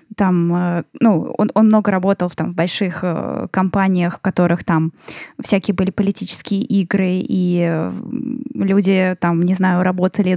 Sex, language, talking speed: female, Russian, 140 wpm